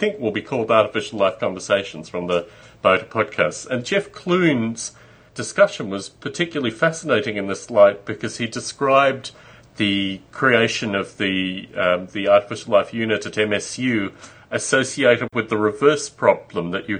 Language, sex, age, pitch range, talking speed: English, male, 40-59, 105-135 Hz, 150 wpm